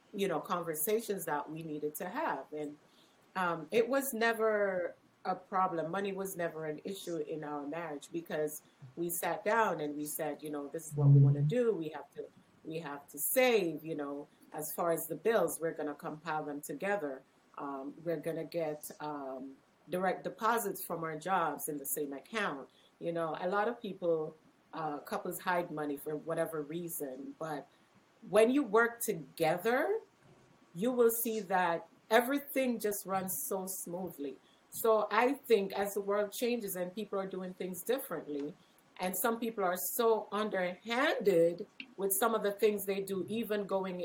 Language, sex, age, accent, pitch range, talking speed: English, female, 30-49, American, 160-210 Hz, 175 wpm